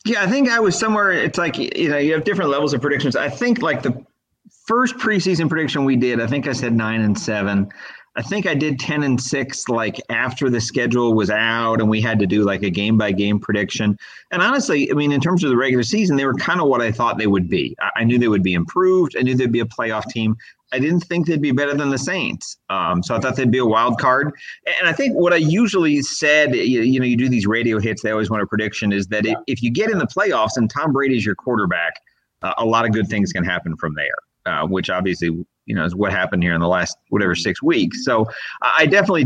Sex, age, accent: male, 30-49, American